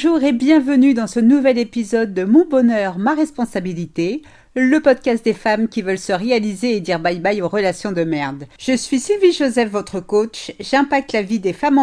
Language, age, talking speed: French, 40-59, 200 wpm